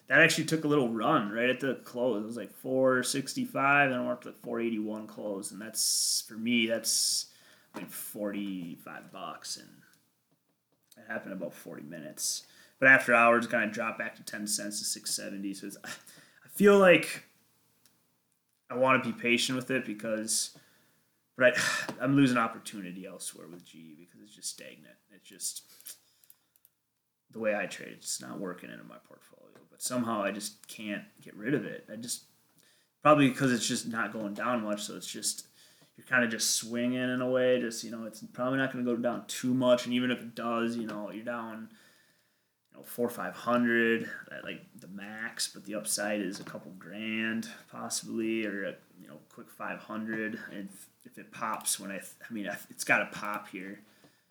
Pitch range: 105-125 Hz